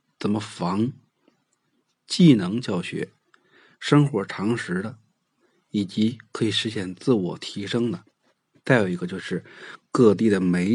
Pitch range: 105-150 Hz